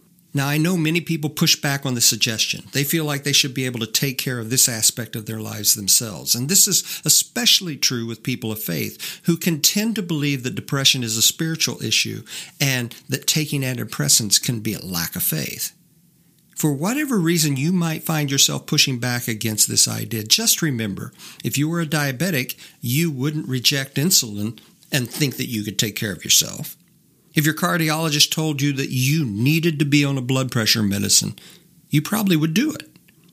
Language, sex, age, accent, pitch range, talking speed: English, male, 50-69, American, 125-170 Hz, 195 wpm